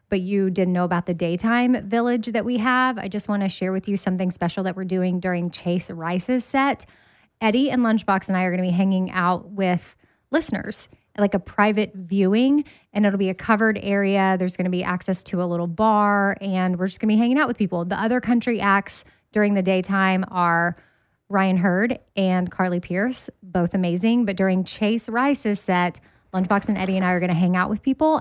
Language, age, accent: English, 20-39, American